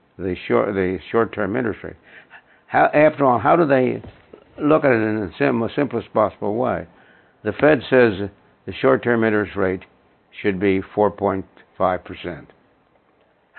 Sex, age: male, 60-79